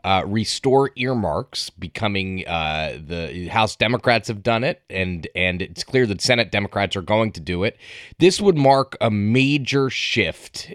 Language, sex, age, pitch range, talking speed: English, male, 30-49, 100-130 Hz, 160 wpm